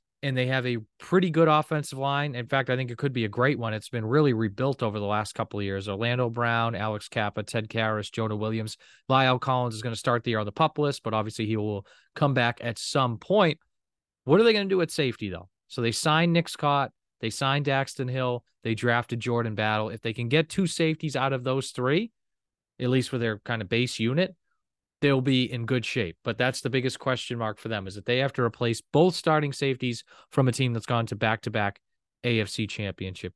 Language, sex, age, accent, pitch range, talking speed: English, male, 30-49, American, 115-150 Hz, 230 wpm